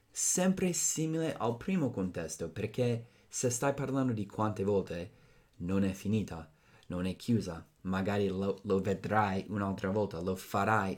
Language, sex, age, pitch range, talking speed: Italian, male, 30-49, 95-115 Hz, 140 wpm